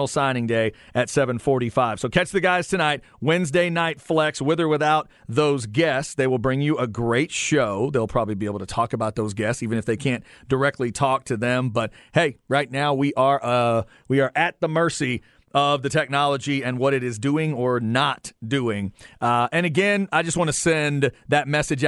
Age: 40-59